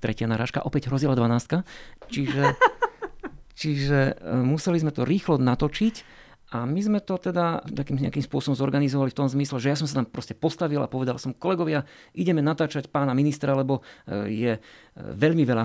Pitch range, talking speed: 125-160 Hz, 165 wpm